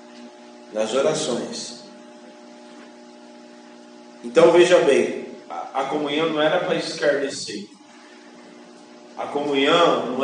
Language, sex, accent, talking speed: Portuguese, male, Brazilian, 80 wpm